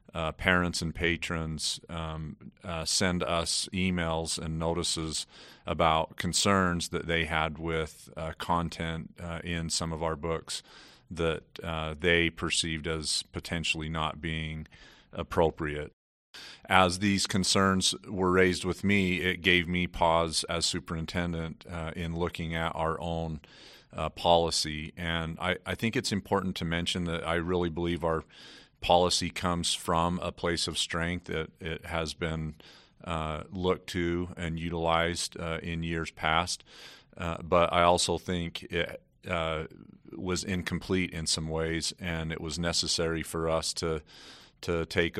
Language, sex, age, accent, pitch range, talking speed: English, male, 40-59, American, 80-85 Hz, 145 wpm